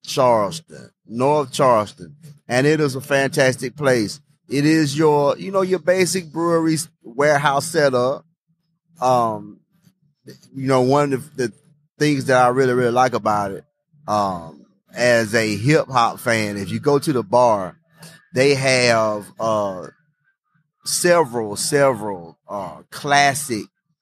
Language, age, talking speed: English, 30-49, 130 wpm